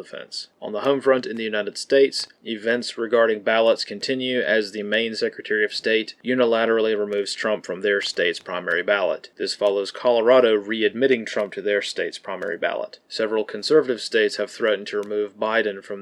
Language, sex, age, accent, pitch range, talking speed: English, male, 30-49, American, 105-130 Hz, 170 wpm